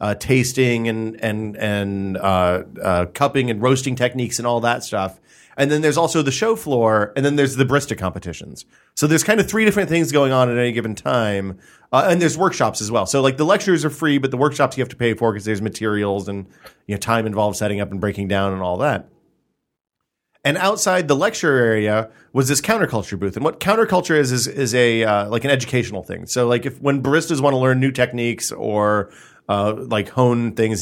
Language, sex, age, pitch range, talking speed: English, male, 30-49, 105-145 Hz, 220 wpm